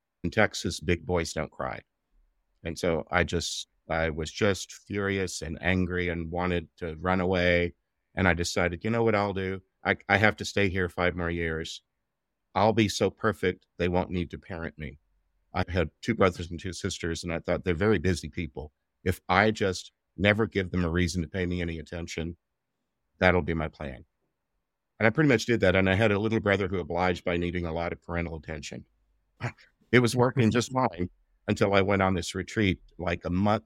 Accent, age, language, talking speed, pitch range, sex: American, 50-69, English, 205 wpm, 85-100 Hz, male